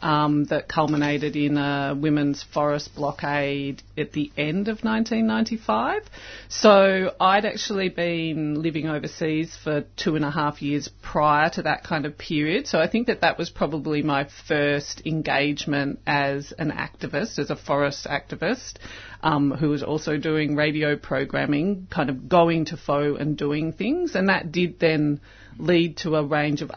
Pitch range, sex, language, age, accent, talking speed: 145-185 Hz, female, English, 30-49, Australian, 160 wpm